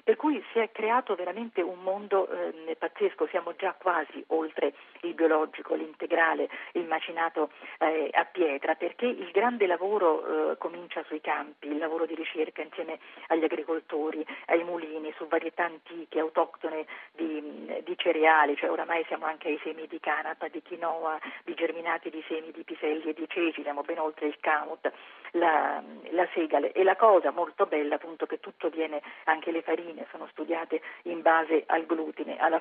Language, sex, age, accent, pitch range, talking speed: Italian, female, 40-59, native, 160-180 Hz, 170 wpm